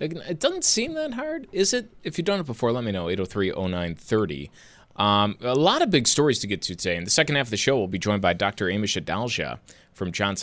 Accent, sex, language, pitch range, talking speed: American, male, English, 95-155 Hz, 270 wpm